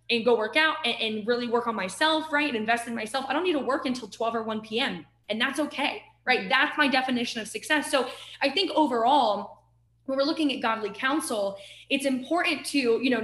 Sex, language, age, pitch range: female, English, 20-39, 225-285 Hz